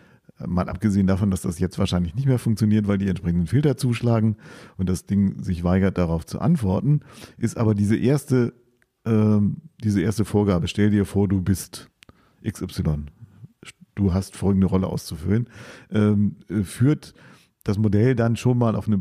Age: 50-69